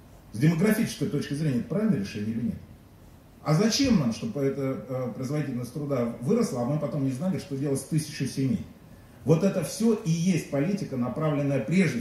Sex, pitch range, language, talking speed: male, 130-175 Hz, Russian, 175 wpm